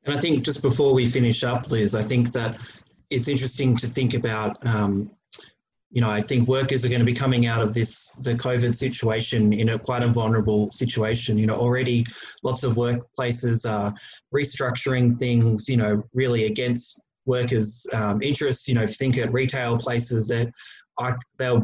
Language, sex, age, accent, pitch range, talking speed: English, male, 20-39, Australian, 110-125 Hz, 175 wpm